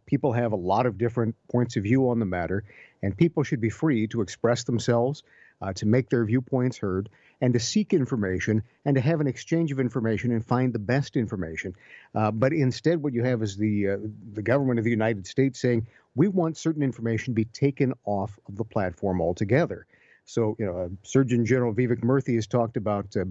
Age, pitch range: 50-69, 110-130 Hz